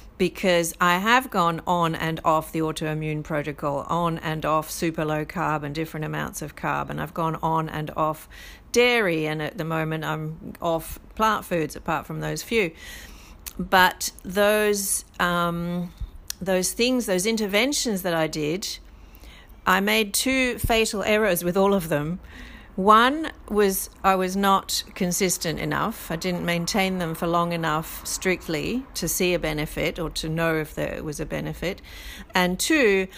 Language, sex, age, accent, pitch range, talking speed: English, female, 40-59, Australian, 160-195 Hz, 155 wpm